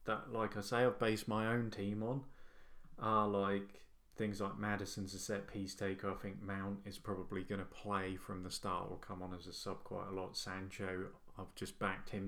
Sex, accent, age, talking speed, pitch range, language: male, British, 20-39, 220 wpm, 95-110 Hz, English